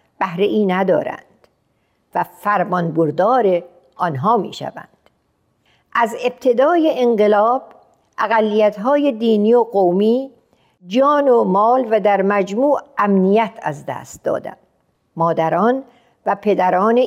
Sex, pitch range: female, 190-250 Hz